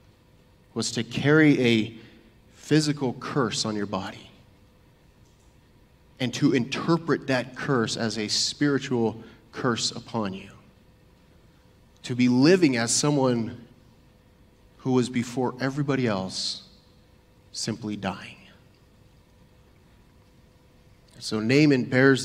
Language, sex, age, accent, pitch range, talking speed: English, male, 30-49, American, 115-150 Hz, 95 wpm